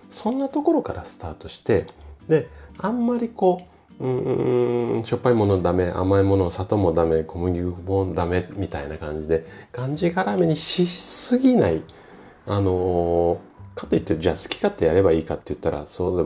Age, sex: 40-59, male